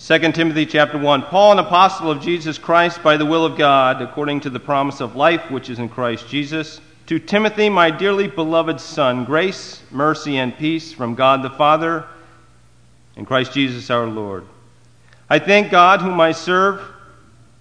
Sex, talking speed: male, 175 wpm